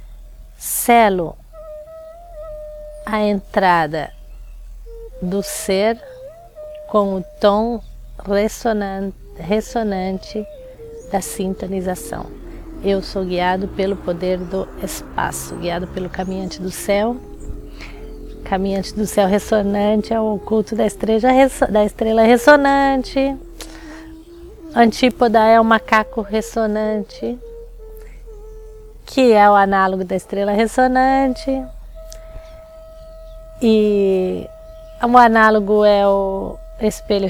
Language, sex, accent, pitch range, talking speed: Portuguese, female, Brazilian, 200-270 Hz, 80 wpm